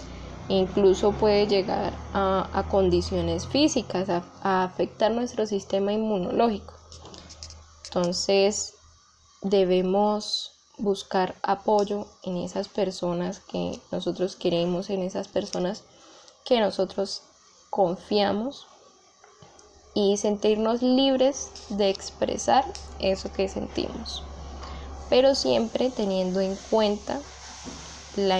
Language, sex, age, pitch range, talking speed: Spanish, female, 10-29, 185-210 Hz, 90 wpm